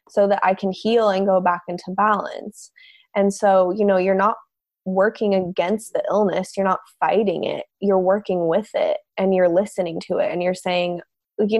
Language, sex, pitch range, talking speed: English, female, 180-210 Hz, 190 wpm